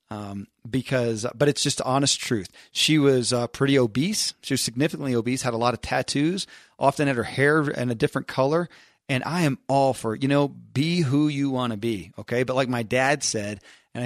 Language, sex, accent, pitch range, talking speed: English, male, American, 120-145 Hz, 220 wpm